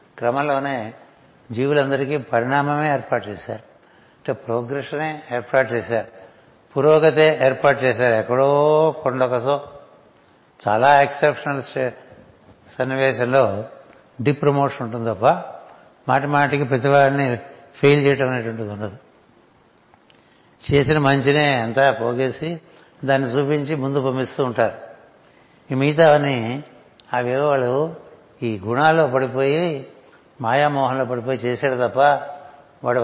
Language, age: Telugu, 60-79